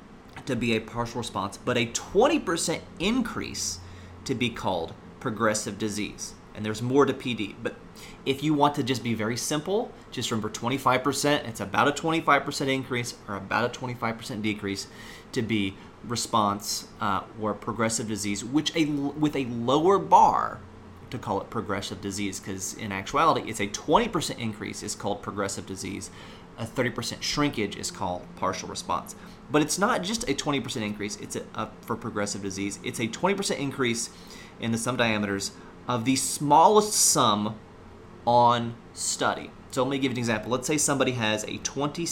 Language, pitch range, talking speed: English, 105-135 Hz, 165 wpm